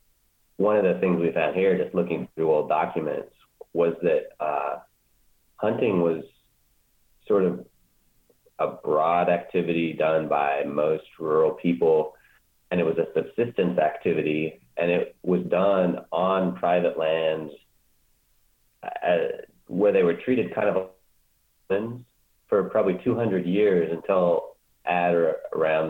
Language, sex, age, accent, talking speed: English, male, 30-49, American, 125 wpm